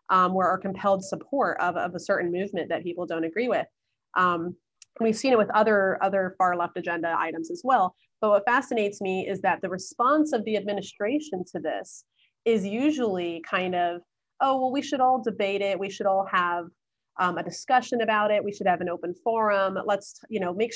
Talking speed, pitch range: 210 wpm, 180-215 Hz